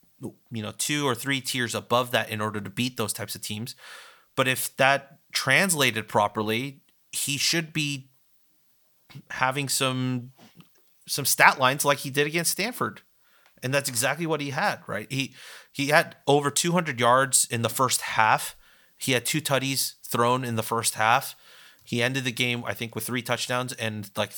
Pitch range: 115-140 Hz